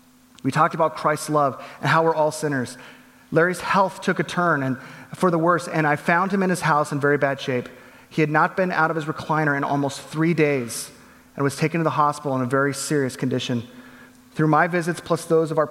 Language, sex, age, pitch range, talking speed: English, male, 30-49, 150-225 Hz, 230 wpm